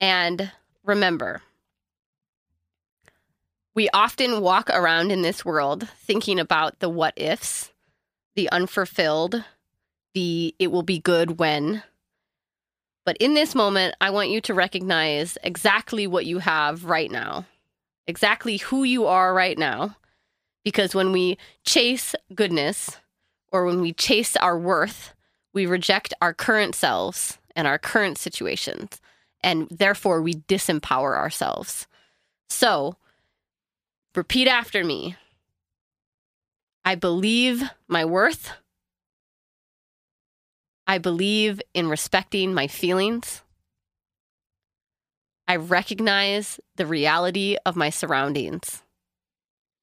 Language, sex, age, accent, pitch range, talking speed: English, female, 20-39, American, 160-200 Hz, 105 wpm